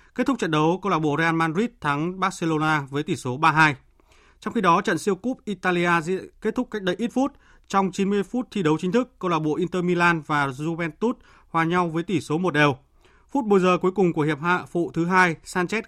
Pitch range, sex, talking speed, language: 135-185 Hz, male, 230 wpm, Vietnamese